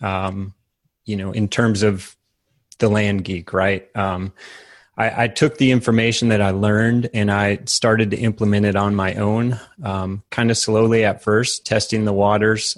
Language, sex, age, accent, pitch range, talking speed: English, male, 30-49, American, 100-115 Hz, 175 wpm